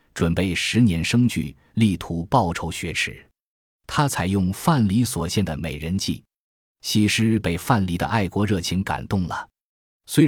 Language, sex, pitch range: Chinese, male, 85-115 Hz